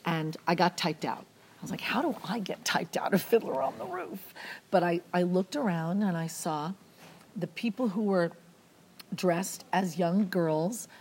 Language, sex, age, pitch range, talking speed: English, female, 40-59, 170-210 Hz, 190 wpm